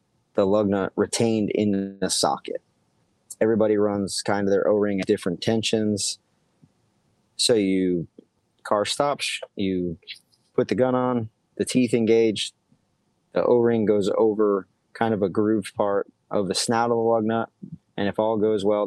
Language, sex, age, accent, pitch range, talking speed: English, male, 30-49, American, 100-120 Hz, 155 wpm